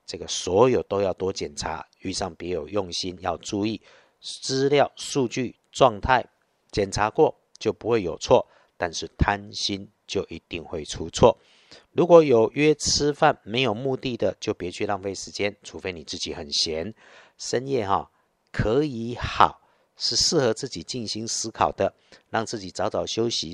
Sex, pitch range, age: male, 95-125 Hz, 50-69